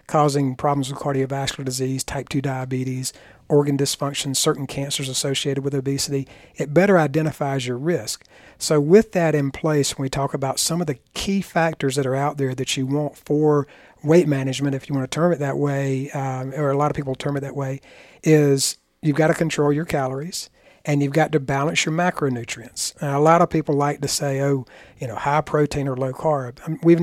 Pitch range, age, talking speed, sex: 135-155 Hz, 50-69, 210 wpm, male